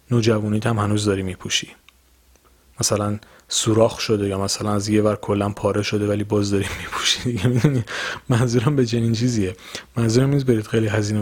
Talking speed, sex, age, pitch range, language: 165 wpm, male, 30-49, 110-140 Hz, Persian